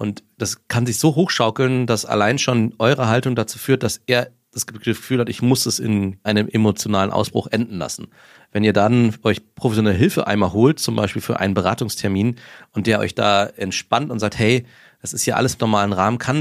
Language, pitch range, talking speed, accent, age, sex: German, 105-125 Hz, 205 wpm, German, 30-49, male